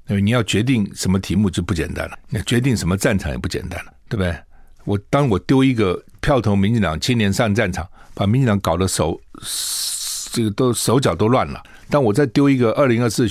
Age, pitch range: 60-79, 95-130 Hz